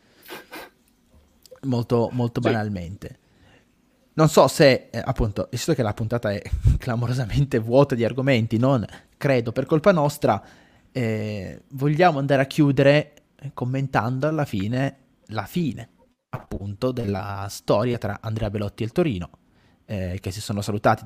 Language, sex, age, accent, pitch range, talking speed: Italian, male, 20-39, native, 105-130 Hz, 130 wpm